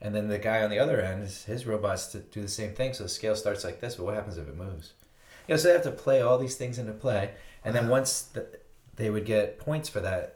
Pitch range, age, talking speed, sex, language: 95-125 Hz, 30-49, 260 wpm, male, English